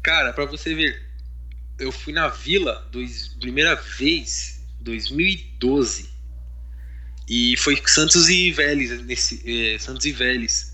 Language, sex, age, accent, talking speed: Portuguese, male, 20-39, Brazilian, 125 wpm